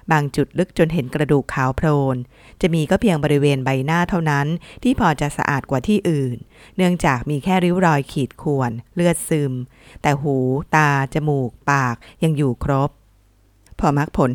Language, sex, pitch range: Thai, female, 135-170 Hz